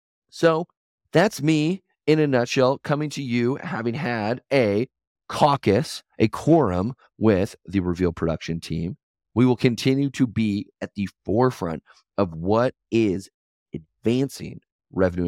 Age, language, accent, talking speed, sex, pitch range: 30-49, English, American, 130 wpm, male, 95-145 Hz